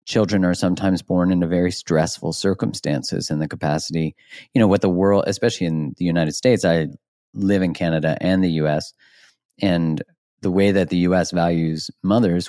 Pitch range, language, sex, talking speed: 90-120 Hz, English, male, 175 wpm